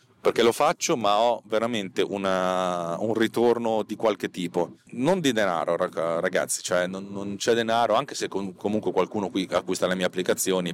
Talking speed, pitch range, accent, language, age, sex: 170 wpm, 90-115 Hz, native, Italian, 30-49, male